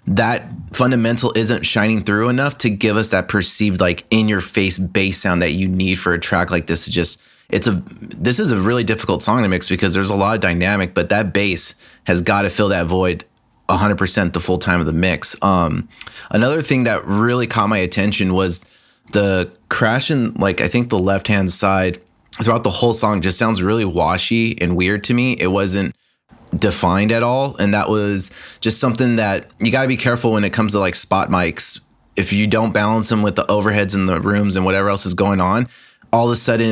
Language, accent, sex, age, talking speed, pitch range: English, American, male, 30-49, 220 wpm, 95-115 Hz